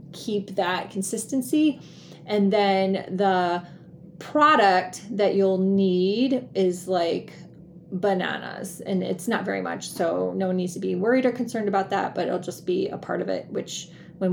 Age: 30-49